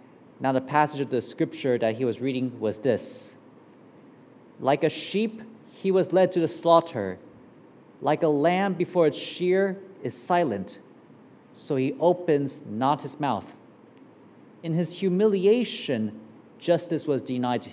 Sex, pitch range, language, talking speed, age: male, 140-190 Hz, English, 140 wpm, 40-59